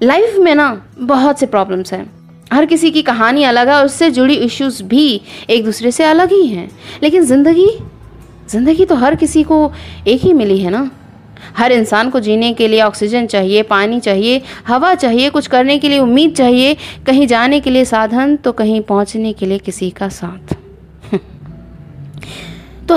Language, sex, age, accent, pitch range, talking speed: Hindi, female, 20-39, native, 220-310 Hz, 175 wpm